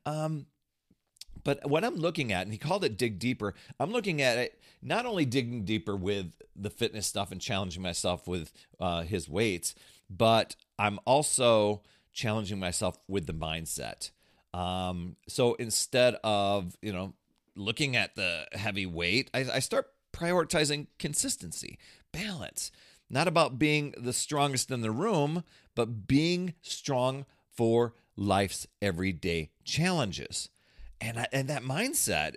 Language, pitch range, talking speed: English, 95-135 Hz, 140 wpm